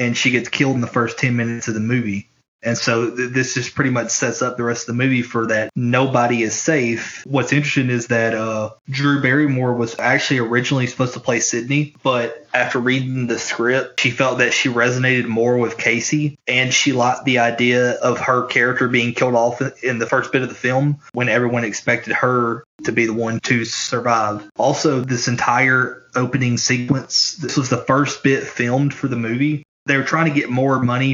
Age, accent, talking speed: 20-39, American, 205 wpm